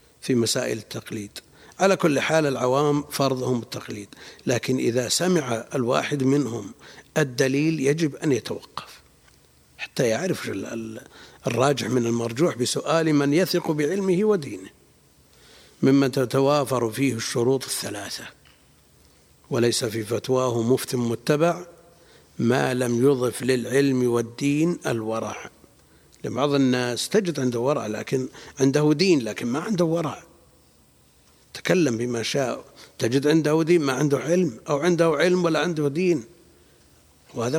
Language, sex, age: Arabic, male, 60-79